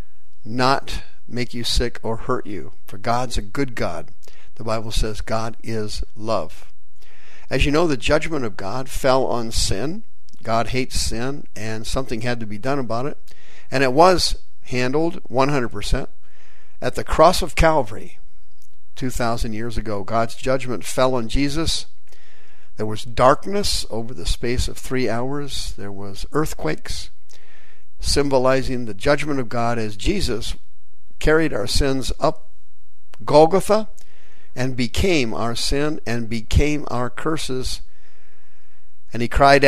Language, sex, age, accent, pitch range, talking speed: English, male, 50-69, American, 110-135 Hz, 140 wpm